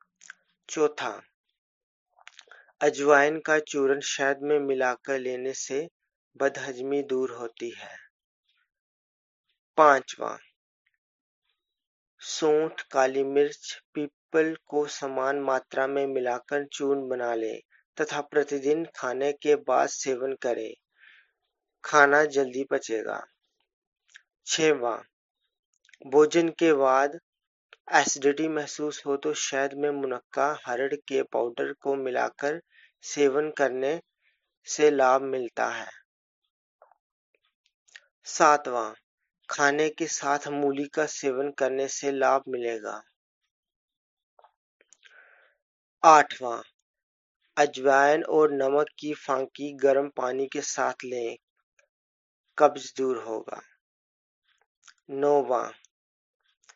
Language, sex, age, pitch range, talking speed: Hindi, male, 30-49, 130-150 Hz, 85 wpm